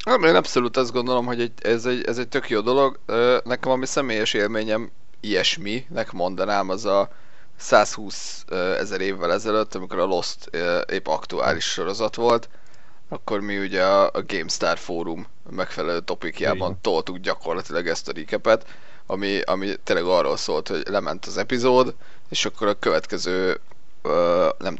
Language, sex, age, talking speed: Hungarian, male, 30-49, 145 wpm